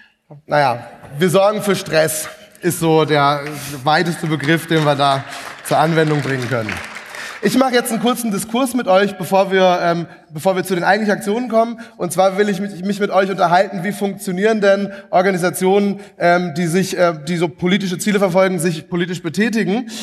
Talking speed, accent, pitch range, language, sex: 175 wpm, German, 165-205 Hz, German, male